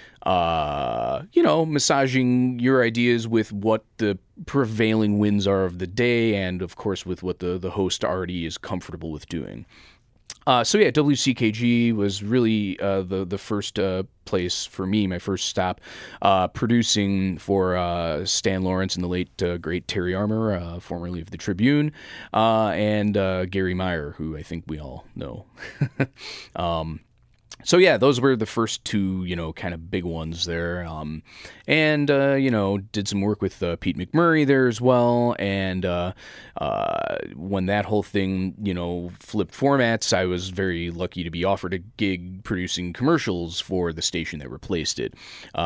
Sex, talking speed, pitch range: male, 175 wpm, 90-115 Hz